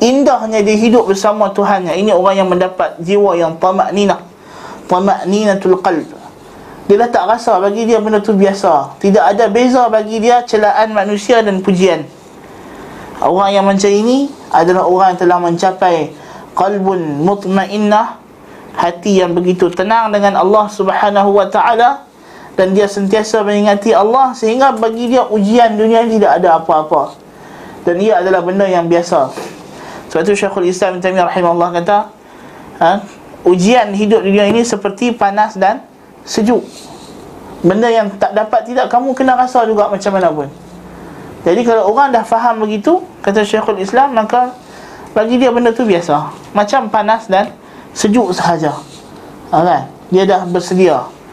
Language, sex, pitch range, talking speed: Malay, male, 190-225 Hz, 145 wpm